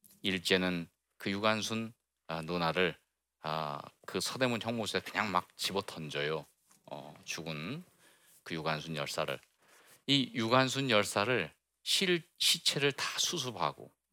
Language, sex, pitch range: Korean, male, 90-130 Hz